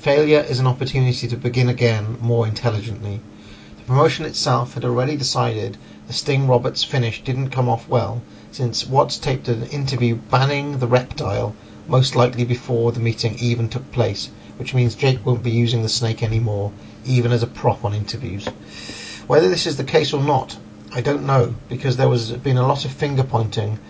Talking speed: 180 wpm